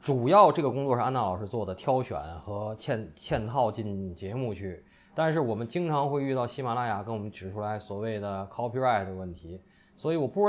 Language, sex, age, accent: Chinese, male, 20-39, native